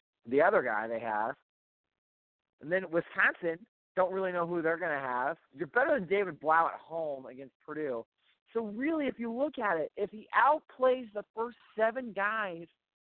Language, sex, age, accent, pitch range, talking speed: English, male, 40-59, American, 150-205 Hz, 180 wpm